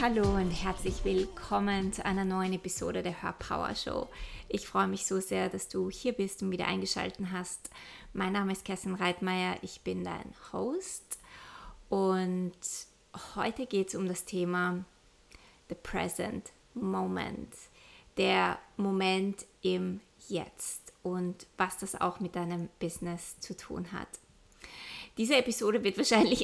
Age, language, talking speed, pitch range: 20-39, German, 140 wpm, 180-200 Hz